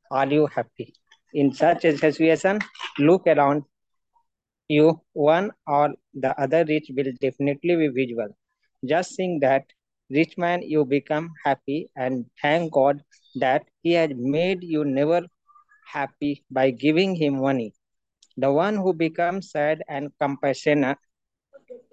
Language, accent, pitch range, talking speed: English, Indian, 140-185 Hz, 130 wpm